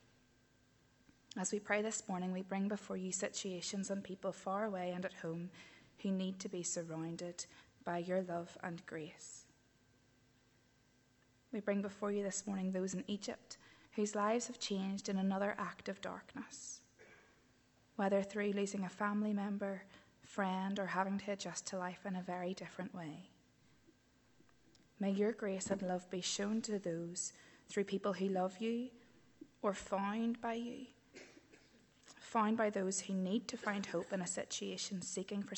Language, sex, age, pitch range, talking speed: English, female, 20-39, 175-205 Hz, 160 wpm